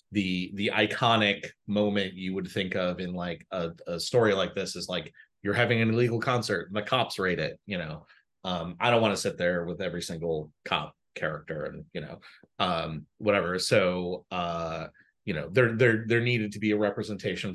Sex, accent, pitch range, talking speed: male, American, 90-115 Hz, 200 wpm